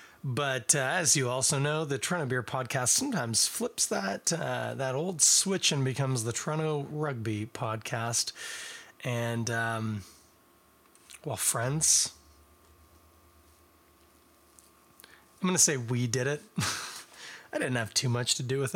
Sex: male